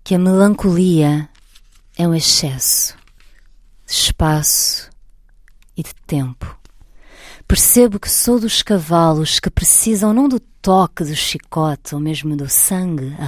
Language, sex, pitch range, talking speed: Portuguese, female, 140-175 Hz, 125 wpm